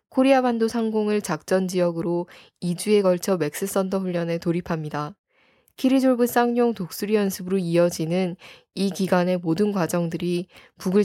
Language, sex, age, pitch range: Korean, female, 10-29, 170-205 Hz